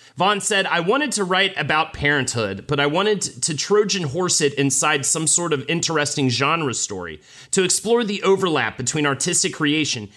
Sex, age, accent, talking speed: male, 30-49, American, 170 wpm